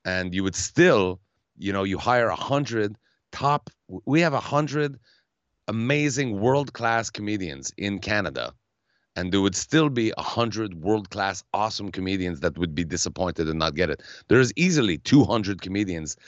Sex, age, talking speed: male, 30-49, 145 wpm